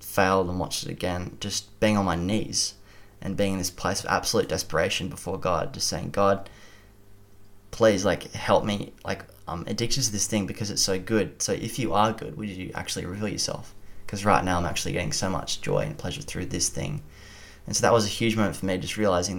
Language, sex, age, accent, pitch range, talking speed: English, male, 20-39, Australian, 90-105 Hz, 225 wpm